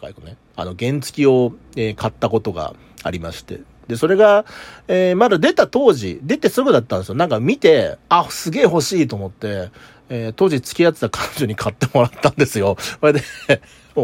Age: 40-59